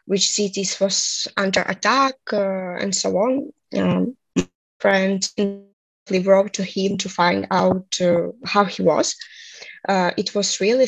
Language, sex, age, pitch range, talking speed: English, female, 20-39, 195-225 Hz, 140 wpm